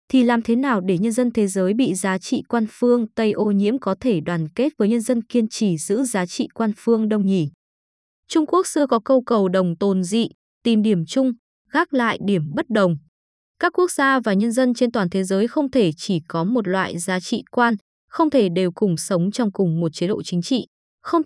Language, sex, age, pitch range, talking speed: Vietnamese, female, 20-39, 190-255 Hz, 230 wpm